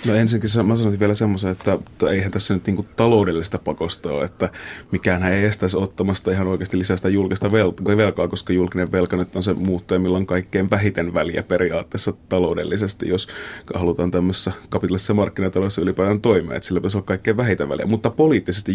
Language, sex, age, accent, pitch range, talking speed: Finnish, male, 30-49, native, 90-100 Hz, 175 wpm